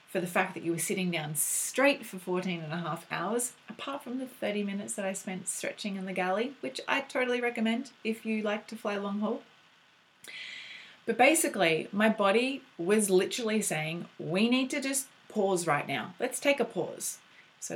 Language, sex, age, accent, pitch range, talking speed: English, female, 30-49, Australian, 180-235 Hz, 195 wpm